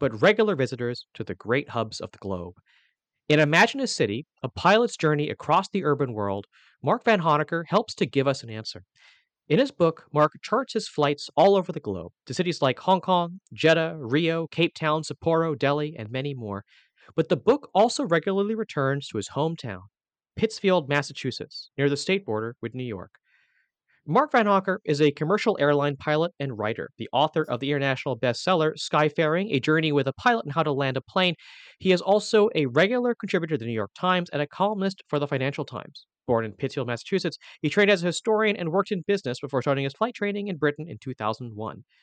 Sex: male